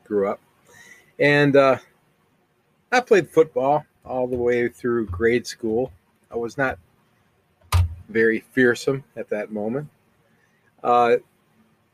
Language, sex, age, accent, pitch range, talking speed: English, male, 40-59, American, 115-150 Hz, 110 wpm